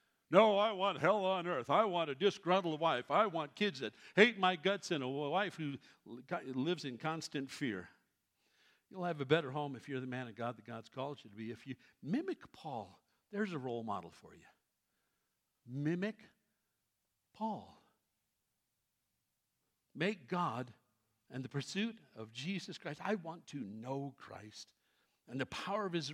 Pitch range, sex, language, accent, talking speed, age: 135-205 Hz, male, English, American, 170 wpm, 60-79